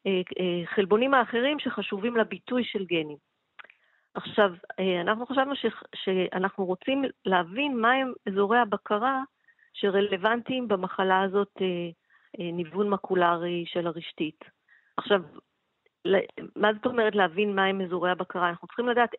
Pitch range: 185-230 Hz